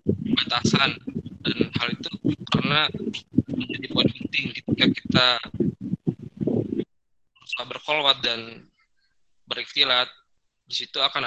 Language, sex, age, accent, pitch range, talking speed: Indonesian, male, 20-39, native, 115-125 Hz, 85 wpm